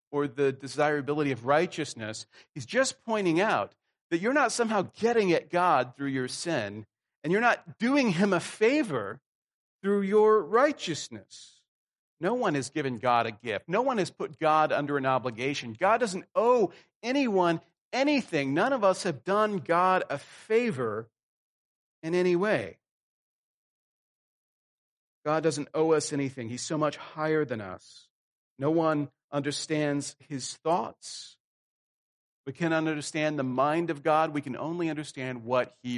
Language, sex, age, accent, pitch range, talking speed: English, male, 40-59, American, 130-165 Hz, 150 wpm